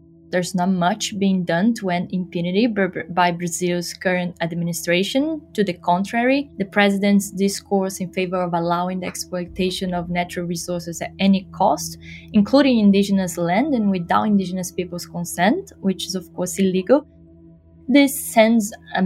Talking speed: 145 wpm